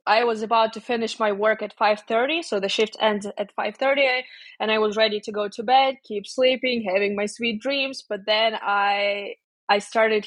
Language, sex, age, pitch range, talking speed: English, female, 20-39, 205-240 Hz, 200 wpm